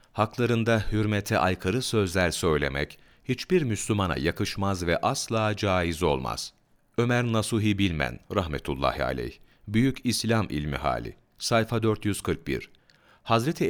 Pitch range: 85-115 Hz